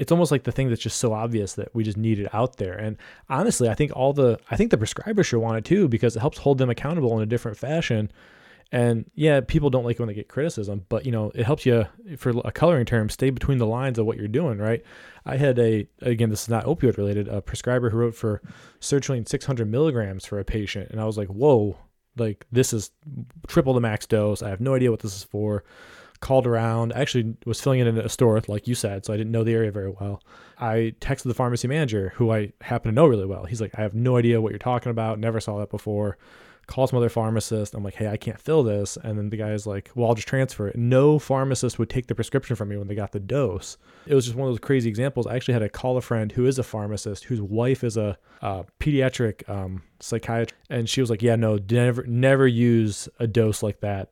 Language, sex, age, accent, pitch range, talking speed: English, male, 20-39, American, 105-130 Hz, 255 wpm